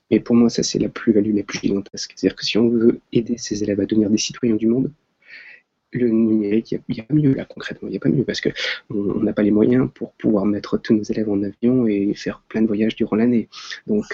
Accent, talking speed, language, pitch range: French, 255 wpm, French, 105-120 Hz